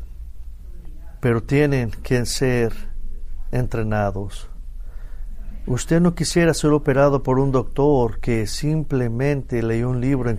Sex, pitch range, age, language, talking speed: male, 100-135 Hz, 50-69, English, 110 wpm